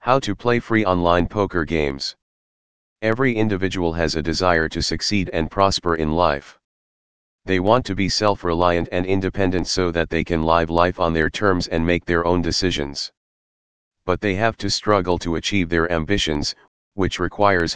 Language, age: English, 40-59